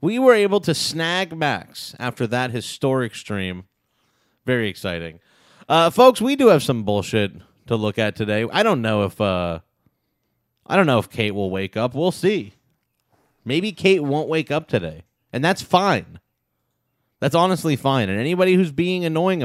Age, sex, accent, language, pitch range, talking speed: 30-49, male, American, English, 110-160 Hz, 170 wpm